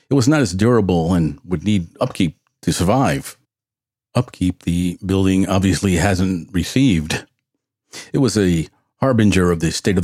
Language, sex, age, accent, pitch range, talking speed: English, male, 50-69, American, 90-115 Hz, 150 wpm